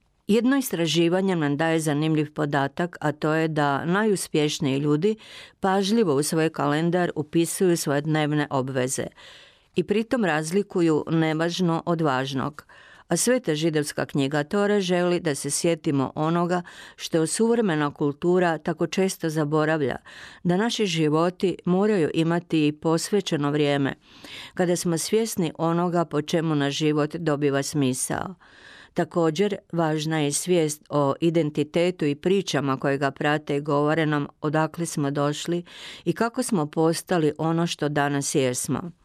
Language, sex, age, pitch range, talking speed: Croatian, female, 50-69, 150-180 Hz, 130 wpm